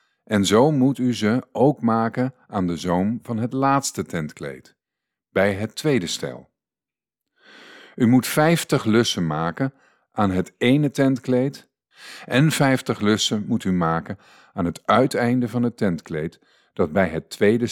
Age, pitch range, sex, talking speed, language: 50-69, 95-130 Hz, male, 145 wpm, Dutch